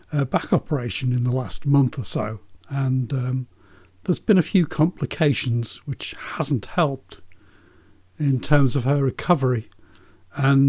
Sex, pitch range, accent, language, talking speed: male, 125-160 Hz, British, English, 135 wpm